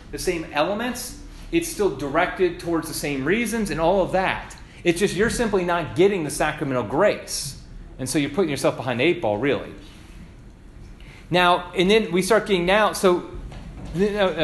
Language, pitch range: English, 145-195 Hz